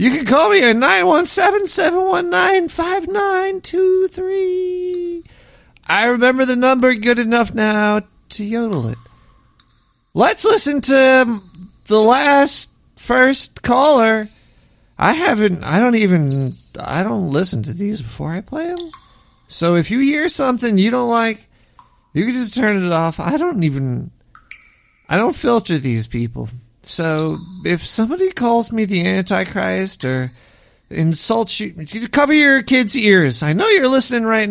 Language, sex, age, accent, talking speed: English, male, 40-59, American, 135 wpm